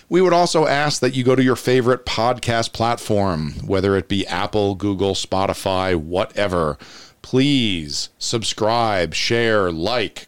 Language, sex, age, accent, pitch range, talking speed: English, male, 40-59, American, 95-115 Hz, 135 wpm